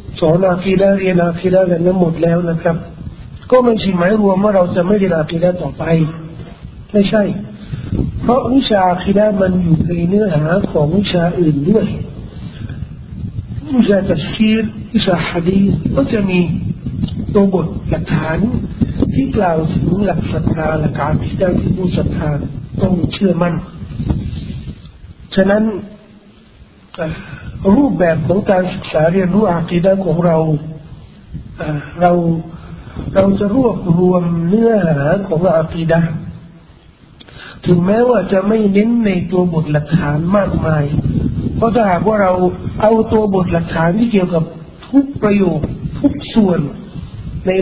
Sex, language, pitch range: male, Thai, 165-195 Hz